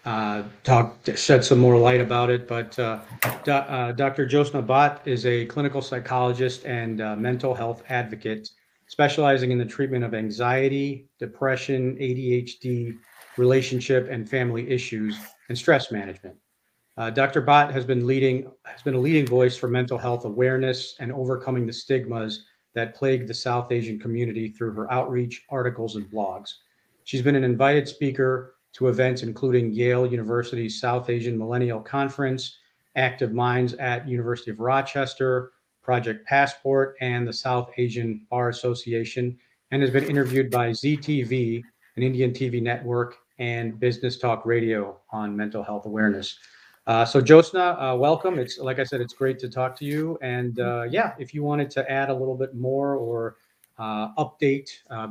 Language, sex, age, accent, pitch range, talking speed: English, male, 40-59, American, 115-135 Hz, 160 wpm